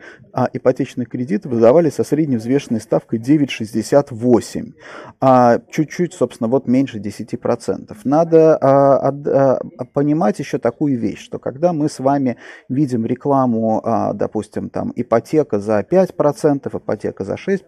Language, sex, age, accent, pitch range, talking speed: Russian, male, 30-49, native, 120-155 Hz, 130 wpm